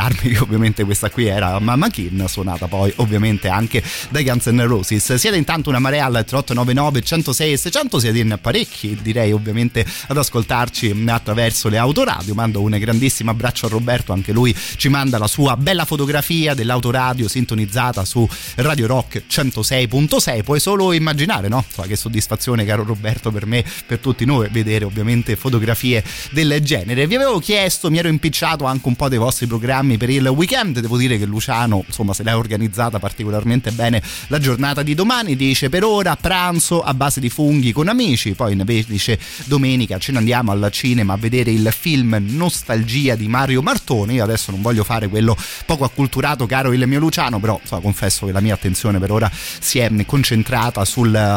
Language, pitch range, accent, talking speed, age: Italian, 110-140 Hz, native, 175 wpm, 30-49